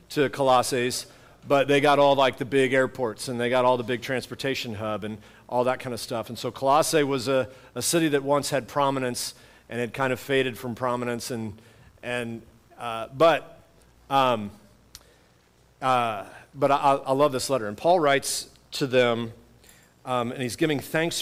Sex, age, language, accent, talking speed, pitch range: male, 50-69, English, American, 180 wpm, 120-140 Hz